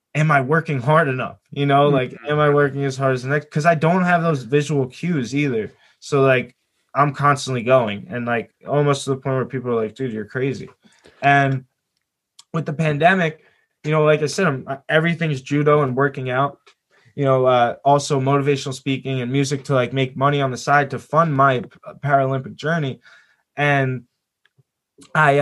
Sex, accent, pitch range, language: male, American, 125-145 Hz, English